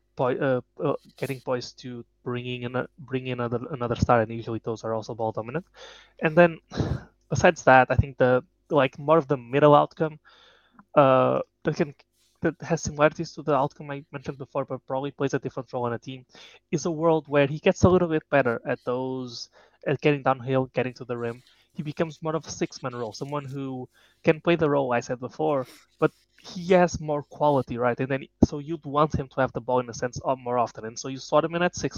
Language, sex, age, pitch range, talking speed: English, male, 20-39, 125-145 Hz, 225 wpm